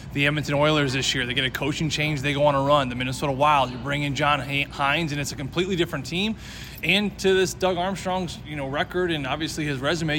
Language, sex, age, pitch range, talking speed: English, male, 20-39, 135-160 Hz, 240 wpm